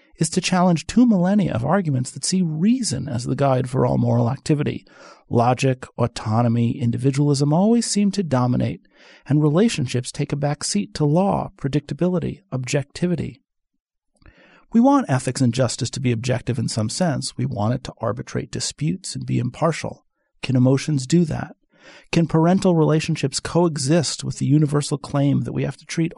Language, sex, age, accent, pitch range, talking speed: English, male, 40-59, American, 135-180 Hz, 160 wpm